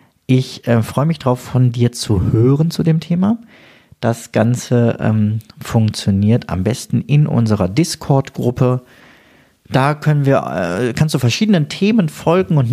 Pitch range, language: 110-150 Hz, German